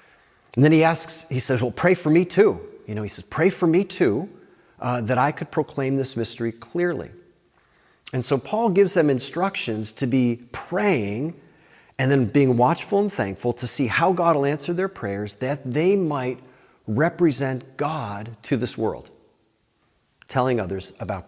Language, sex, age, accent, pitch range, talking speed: English, male, 40-59, American, 115-160 Hz, 170 wpm